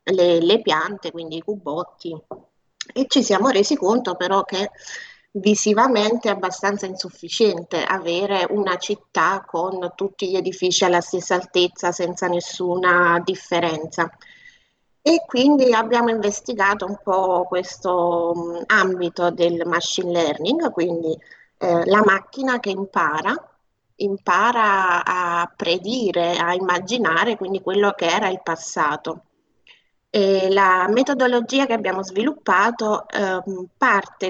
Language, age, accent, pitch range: Italian, 30-49, native, 175-210 Hz